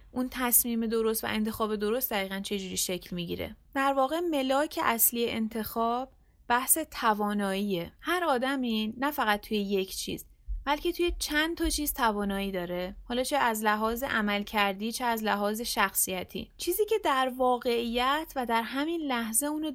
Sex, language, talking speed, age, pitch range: female, Persian, 160 wpm, 30-49, 210-270 Hz